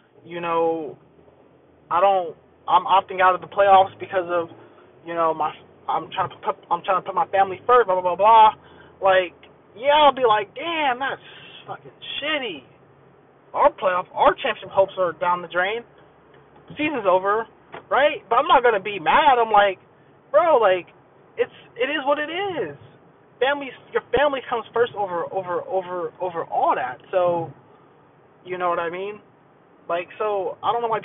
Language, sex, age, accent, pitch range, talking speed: English, male, 20-39, American, 175-235 Hz, 175 wpm